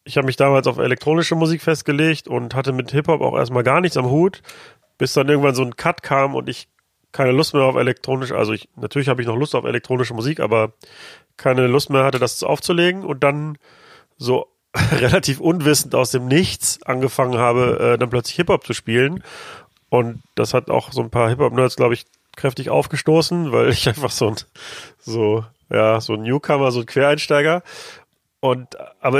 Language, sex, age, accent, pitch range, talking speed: German, male, 30-49, German, 125-155 Hz, 190 wpm